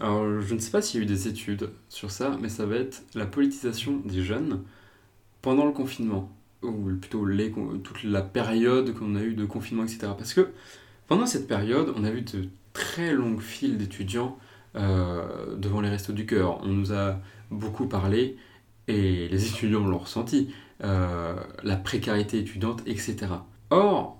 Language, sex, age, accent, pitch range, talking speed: French, male, 20-39, French, 95-120 Hz, 175 wpm